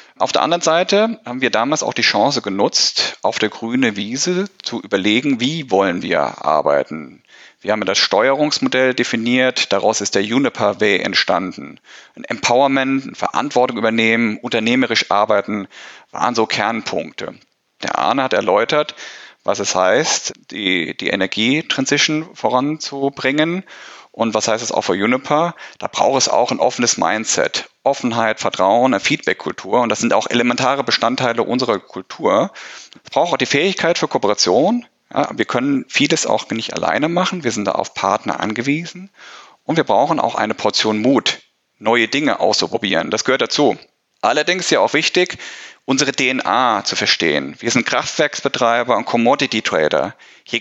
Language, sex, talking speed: German, male, 150 wpm